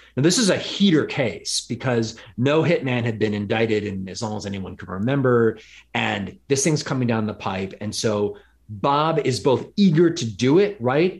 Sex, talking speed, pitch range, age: male, 195 wpm, 105-135 Hz, 30-49